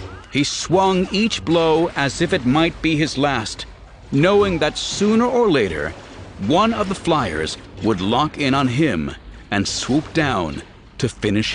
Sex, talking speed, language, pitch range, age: male, 155 wpm, English, 100-155 Hz, 60-79